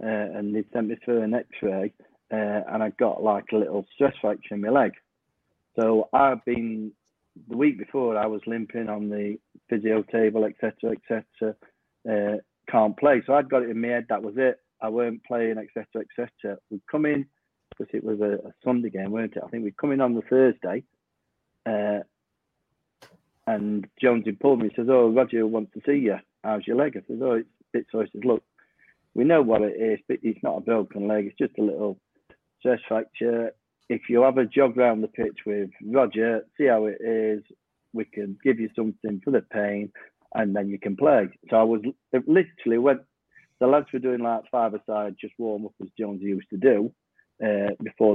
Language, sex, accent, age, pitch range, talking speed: English, male, British, 40-59, 105-120 Hz, 210 wpm